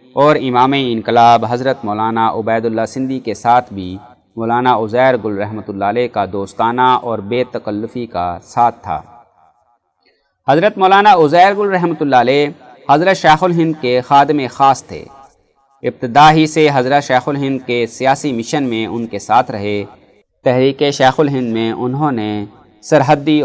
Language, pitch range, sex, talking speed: Urdu, 110-145 Hz, male, 155 wpm